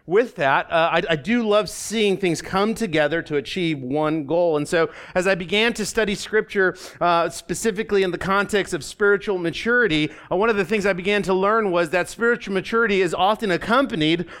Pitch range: 165-210 Hz